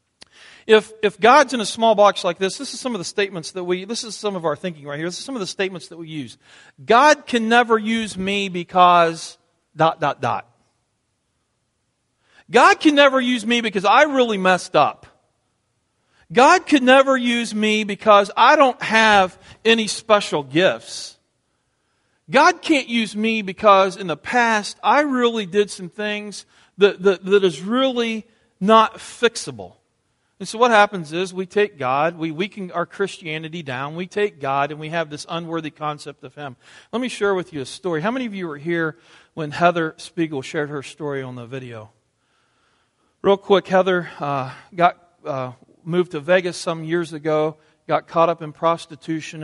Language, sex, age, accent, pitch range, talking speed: English, male, 40-59, American, 150-210 Hz, 180 wpm